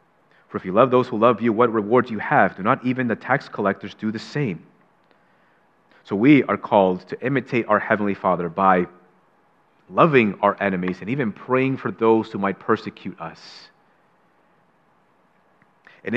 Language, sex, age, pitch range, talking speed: English, male, 30-49, 105-135 Hz, 165 wpm